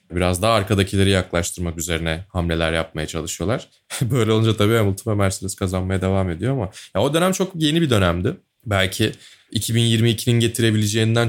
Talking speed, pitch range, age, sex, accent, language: 150 wpm, 90-120 Hz, 20-39, male, native, Turkish